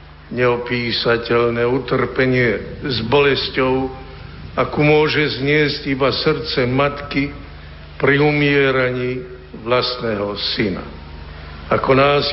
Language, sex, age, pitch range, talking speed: Slovak, male, 60-79, 95-140 Hz, 80 wpm